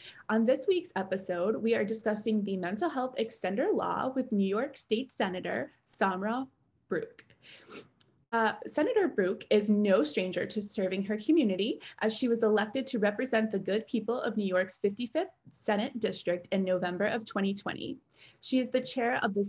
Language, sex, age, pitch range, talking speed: English, female, 20-39, 195-250 Hz, 165 wpm